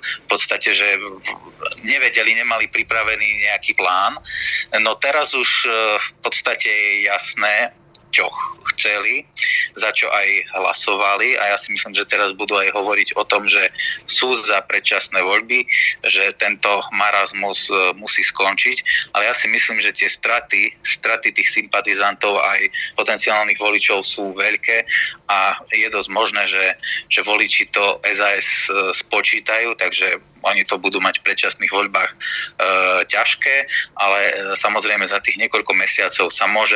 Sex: male